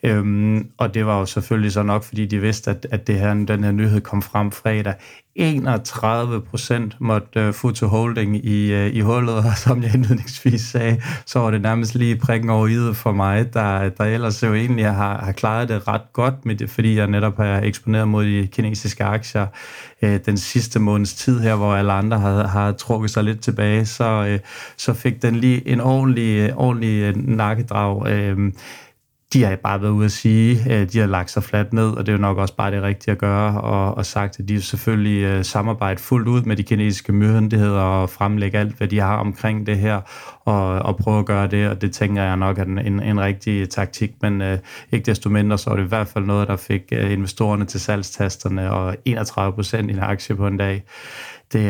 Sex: male